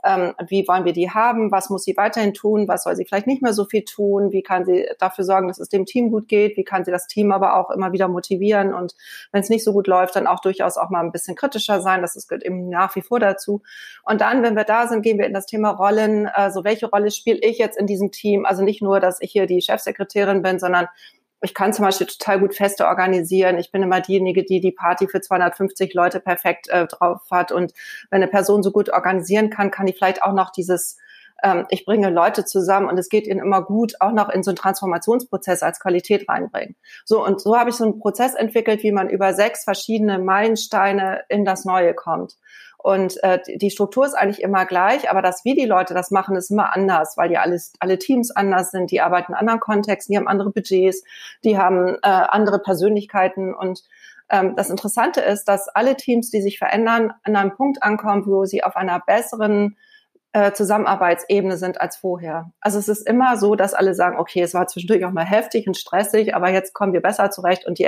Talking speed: 225 wpm